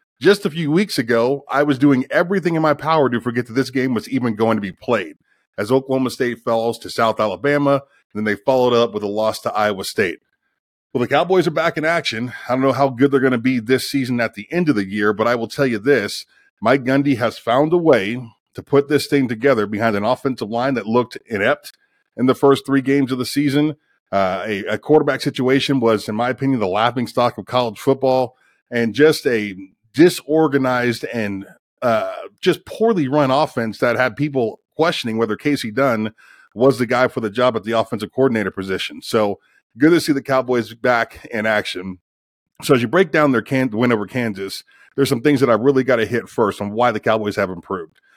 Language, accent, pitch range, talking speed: English, American, 115-140 Hz, 215 wpm